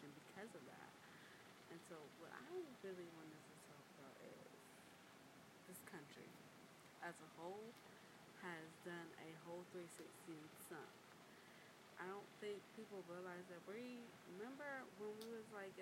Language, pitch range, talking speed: English, 160-190 Hz, 135 wpm